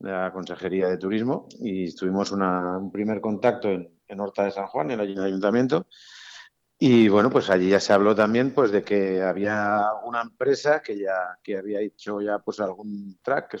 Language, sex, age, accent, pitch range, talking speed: Spanish, male, 50-69, Spanish, 95-115 Hz, 195 wpm